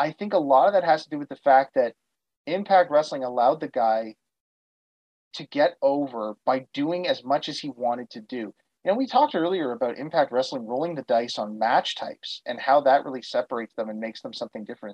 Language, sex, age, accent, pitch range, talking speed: English, male, 30-49, American, 125-175 Hz, 220 wpm